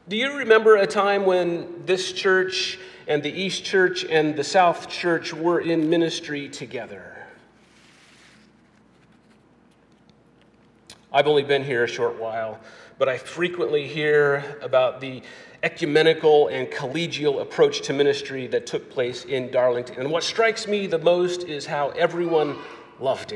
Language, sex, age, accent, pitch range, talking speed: English, male, 40-59, American, 145-205 Hz, 140 wpm